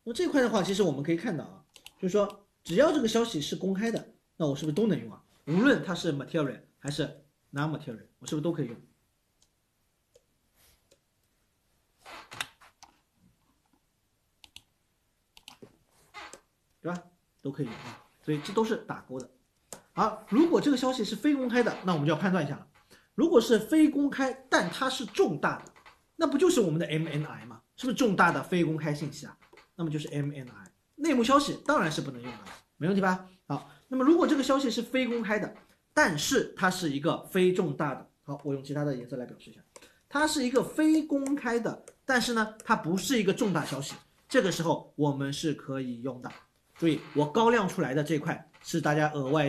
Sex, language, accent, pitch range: male, Chinese, native, 150-235 Hz